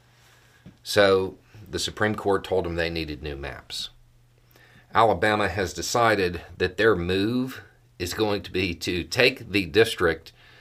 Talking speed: 135 wpm